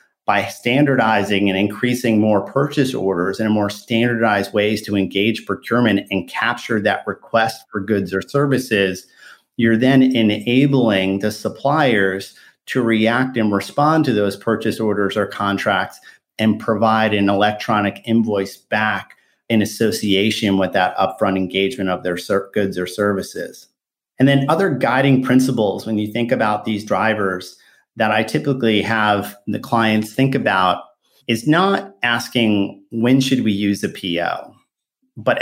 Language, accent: English, American